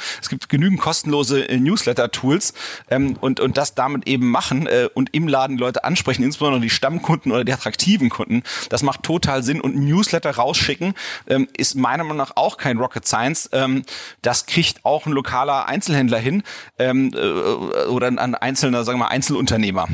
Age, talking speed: 40-59, 170 wpm